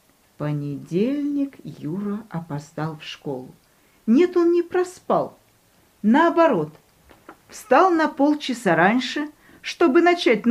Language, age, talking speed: Russian, 40-59, 90 wpm